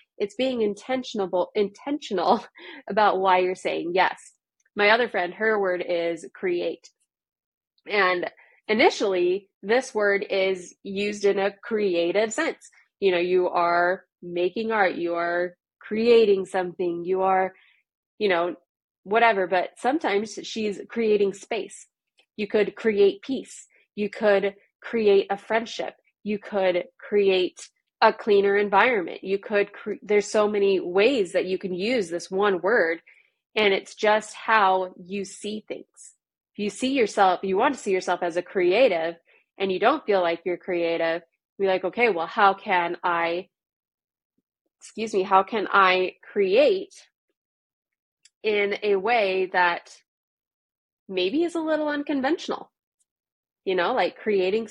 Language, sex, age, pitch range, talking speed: English, female, 20-39, 185-220 Hz, 140 wpm